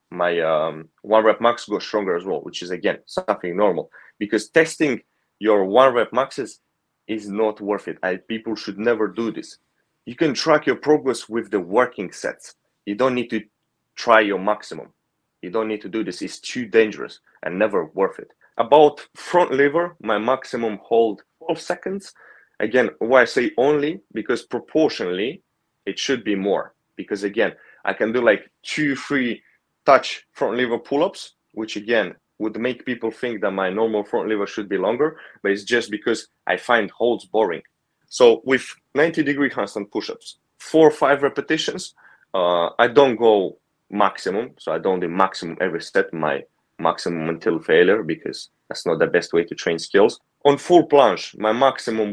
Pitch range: 105-150 Hz